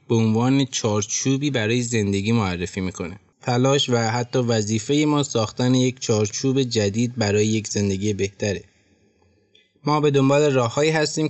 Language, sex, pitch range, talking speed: Persian, male, 105-125 Hz, 135 wpm